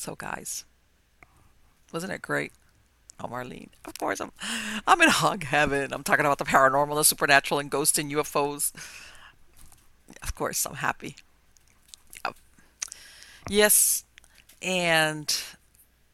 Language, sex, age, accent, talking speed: English, female, 50-69, American, 115 wpm